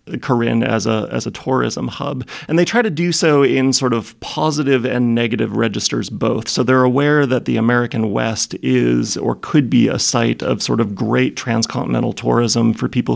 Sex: male